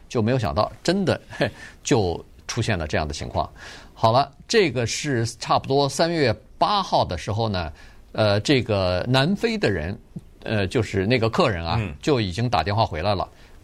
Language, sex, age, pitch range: Chinese, male, 50-69, 105-145 Hz